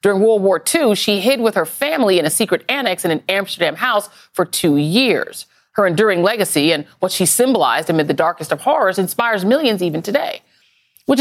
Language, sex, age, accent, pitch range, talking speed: English, female, 40-59, American, 175-255 Hz, 200 wpm